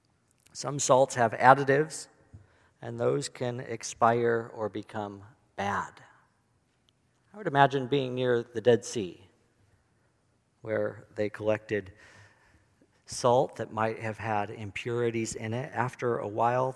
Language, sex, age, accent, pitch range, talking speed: English, male, 50-69, American, 110-145 Hz, 120 wpm